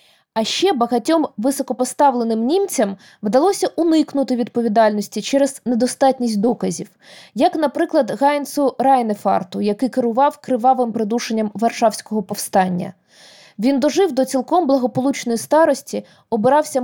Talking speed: 100 wpm